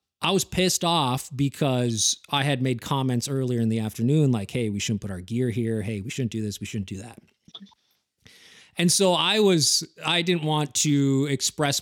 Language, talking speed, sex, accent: English, 200 wpm, male, American